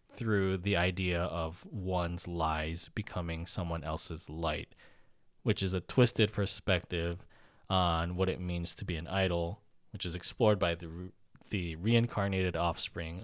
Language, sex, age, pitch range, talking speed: English, male, 20-39, 85-105 Hz, 140 wpm